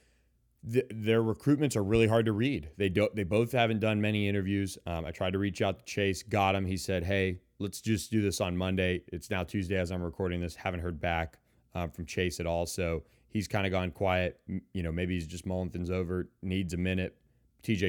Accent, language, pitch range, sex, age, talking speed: American, English, 90-100 Hz, male, 30-49, 230 wpm